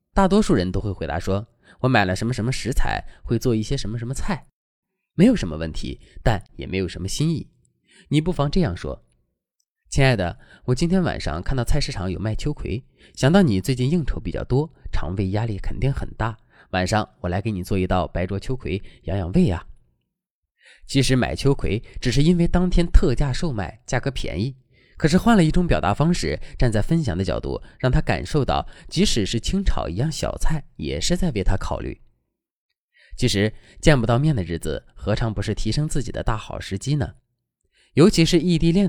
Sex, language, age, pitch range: male, Chinese, 20-39, 95-145 Hz